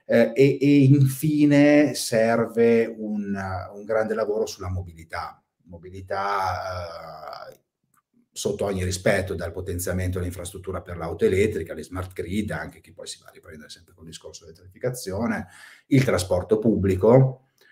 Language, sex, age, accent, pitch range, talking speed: Italian, male, 30-49, native, 90-115 Hz, 135 wpm